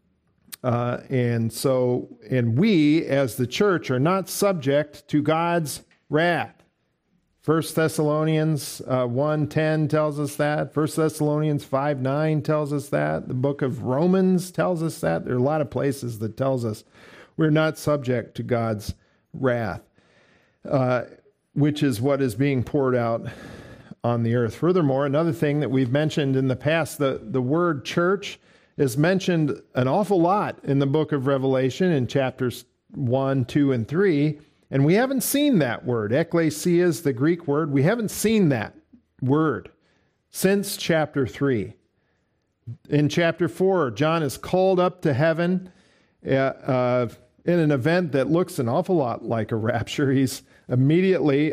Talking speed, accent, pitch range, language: 155 wpm, American, 130-165 Hz, English